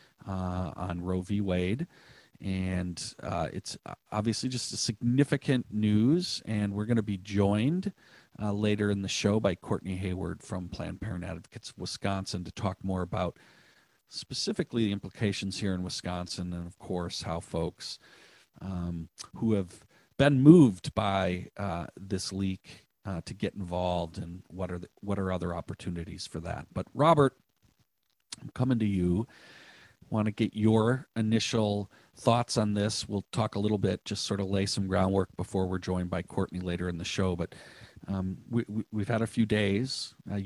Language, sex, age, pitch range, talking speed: English, male, 40-59, 95-115 Hz, 170 wpm